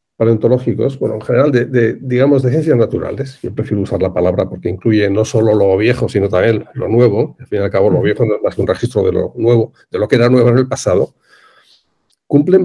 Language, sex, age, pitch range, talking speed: Spanish, male, 50-69, 115-150 Hz, 230 wpm